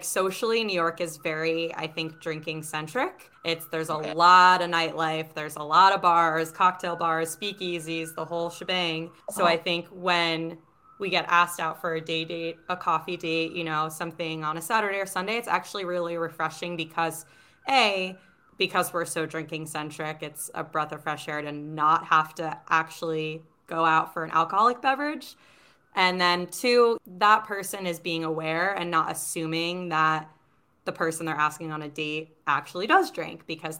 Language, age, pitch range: English, 20-39, 160-180 Hz